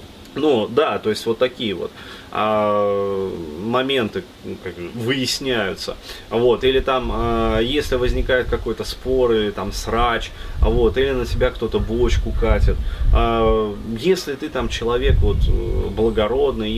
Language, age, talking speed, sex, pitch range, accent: Russian, 20-39, 125 wpm, male, 85-115 Hz, native